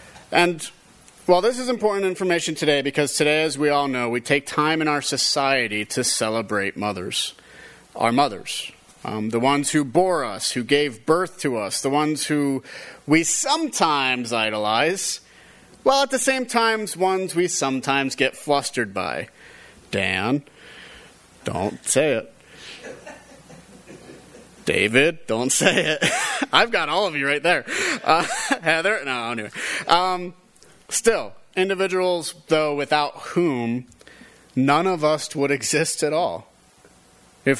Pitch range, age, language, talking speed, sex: 135-175 Hz, 30-49, English, 135 wpm, male